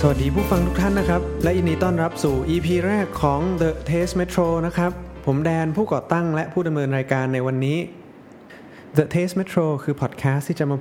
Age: 20-39